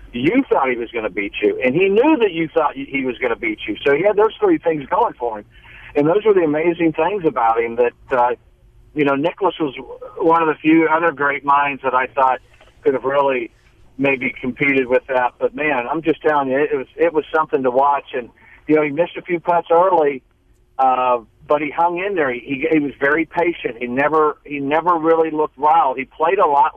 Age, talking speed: 50-69, 235 wpm